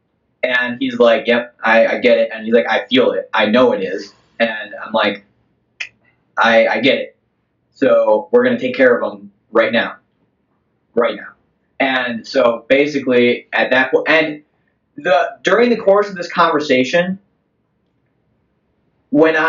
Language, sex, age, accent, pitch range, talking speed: English, male, 20-39, American, 130-175 Hz, 160 wpm